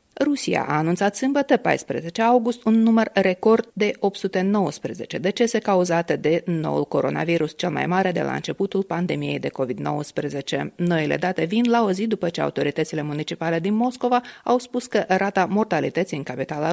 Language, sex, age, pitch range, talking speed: Romanian, female, 30-49, 160-225 Hz, 160 wpm